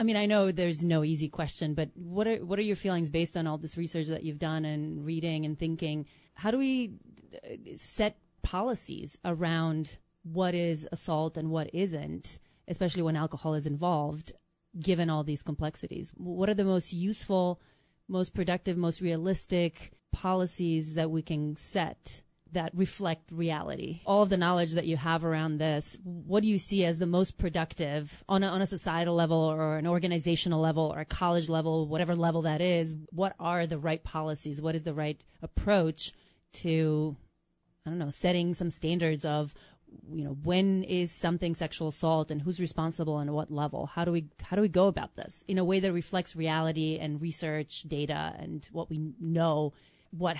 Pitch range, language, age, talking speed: 155-180 Hz, English, 30-49, 185 wpm